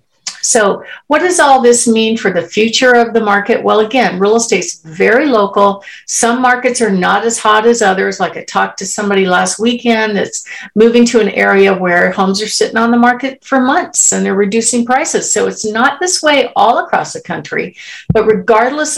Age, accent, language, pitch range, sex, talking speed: 50-69, American, English, 195-240 Hz, female, 200 wpm